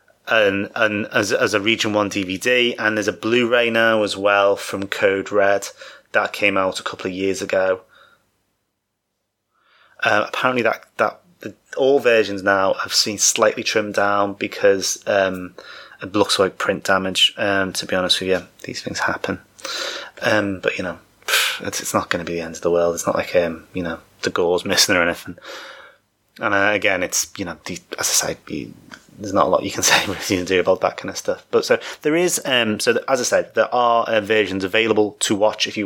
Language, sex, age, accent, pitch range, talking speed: English, male, 20-39, British, 100-125 Hz, 210 wpm